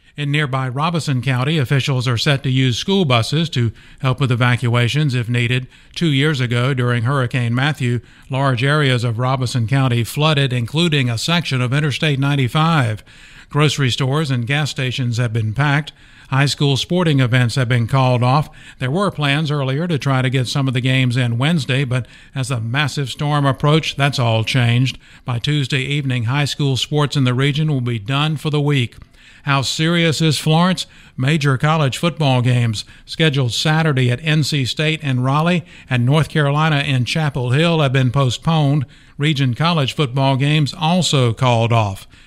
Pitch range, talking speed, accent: 125-155 Hz, 170 wpm, American